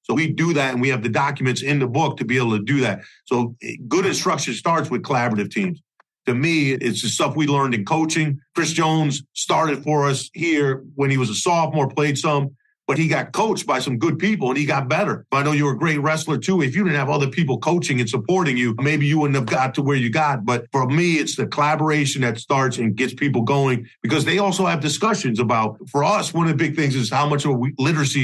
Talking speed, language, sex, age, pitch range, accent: 245 wpm, English, male, 50-69, 130-160 Hz, American